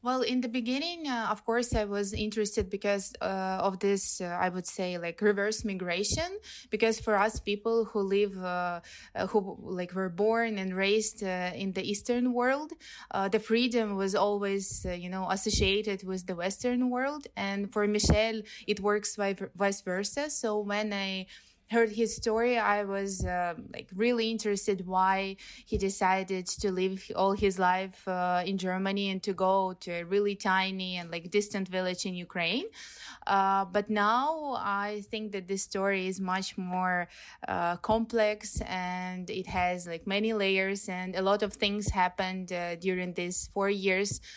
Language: German